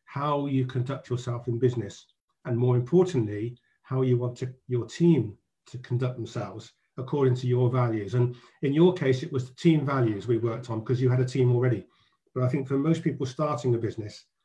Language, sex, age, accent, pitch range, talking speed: English, male, 50-69, British, 125-160 Hz, 205 wpm